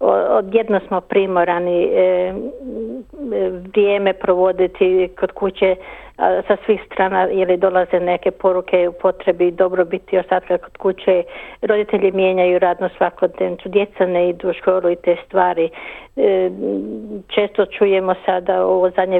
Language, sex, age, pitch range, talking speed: Croatian, female, 50-69, 185-205 Hz, 130 wpm